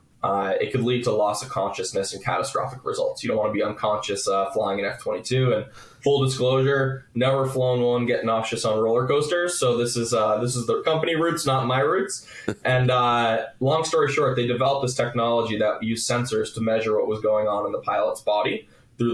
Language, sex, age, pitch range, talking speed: English, male, 10-29, 115-135 Hz, 210 wpm